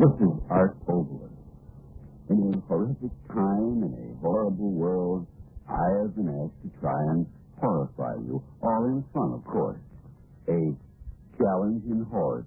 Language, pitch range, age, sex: English, 75-110 Hz, 60-79, male